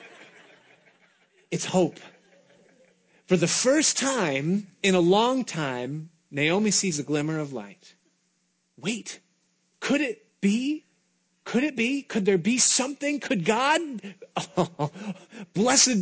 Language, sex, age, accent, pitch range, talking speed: English, male, 30-49, American, 140-195 Hz, 110 wpm